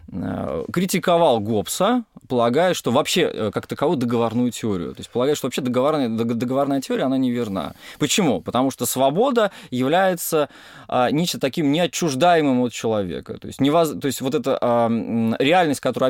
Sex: male